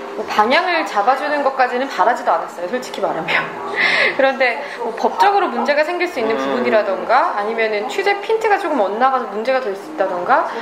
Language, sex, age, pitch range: Korean, female, 20-39, 210-315 Hz